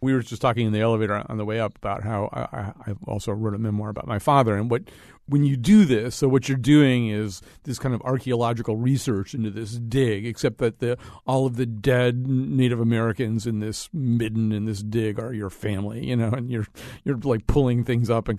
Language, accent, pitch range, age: English, American, 115-145 Hz, 40-59